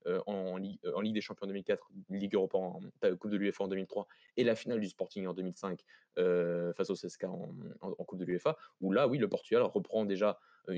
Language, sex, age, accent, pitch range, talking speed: French, male, 20-39, French, 95-110 Hz, 225 wpm